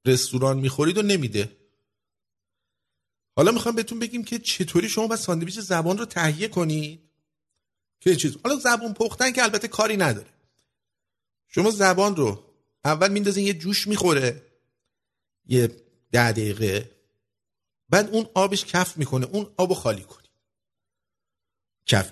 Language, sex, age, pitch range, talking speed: English, male, 50-69, 105-170 Hz, 135 wpm